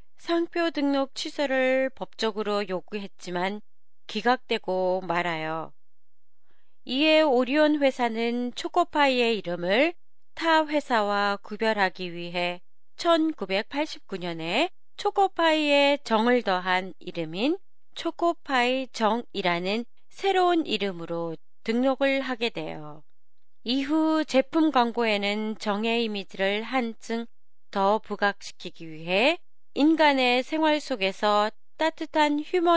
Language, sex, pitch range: Japanese, female, 195-285 Hz